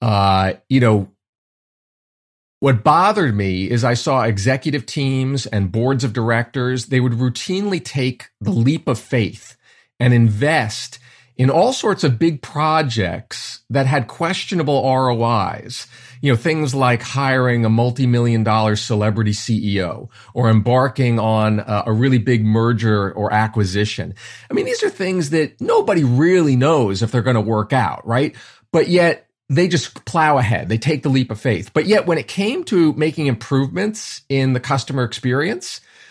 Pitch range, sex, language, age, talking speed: 110-140 Hz, male, English, 40-59, 155 wpm